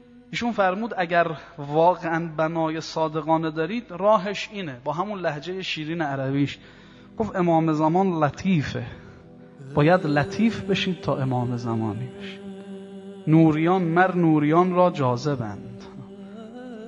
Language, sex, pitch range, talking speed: Persian, male, 165-215 Hz, 105 wpm